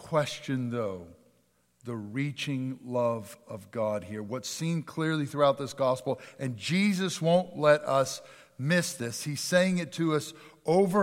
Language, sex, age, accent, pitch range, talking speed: English, male, 50-69, American, 125-160 Hz, 145 wpm